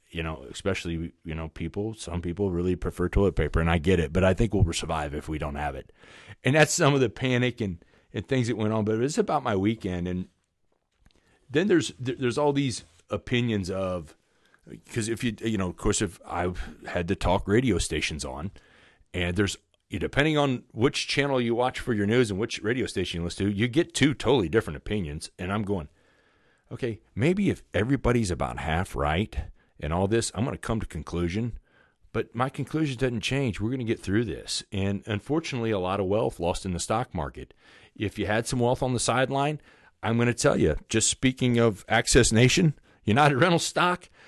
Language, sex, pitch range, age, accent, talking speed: English, male, 90-130 Hz, 40-59, American, 205 wpm